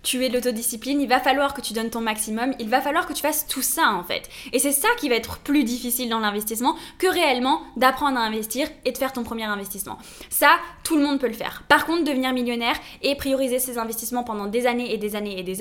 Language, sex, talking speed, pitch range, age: French, female, 255 wpm, 230-275 Hz, 10-29